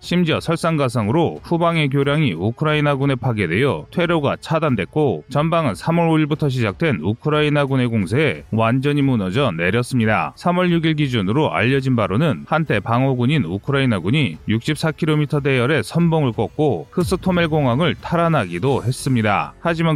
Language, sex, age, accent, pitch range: Korean, male, 30-49, native, 120-155 Hz